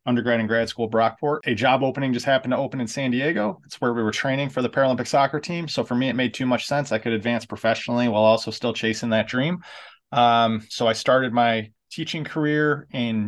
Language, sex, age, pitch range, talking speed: English, male, 30-49, 110-125 Hz, 230 wpm